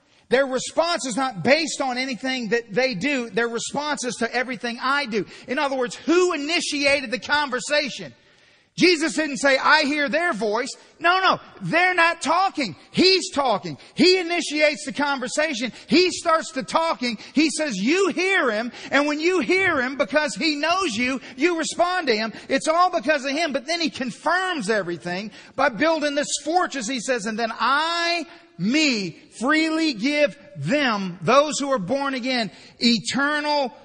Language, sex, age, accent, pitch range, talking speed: English, male, 40-59, American, 245-310 Hz, 165 wpm